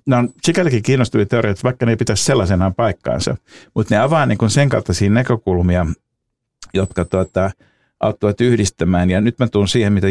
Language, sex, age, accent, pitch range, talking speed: Finnish, male, 50-69, native, 90-115 Hz, 160 wpm